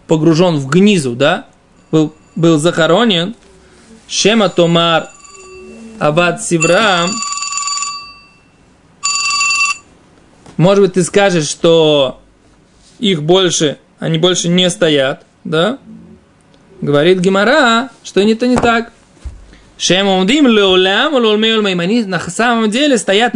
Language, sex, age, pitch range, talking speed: Russian, male, 20-39, 165-225 Hz, 85 wpm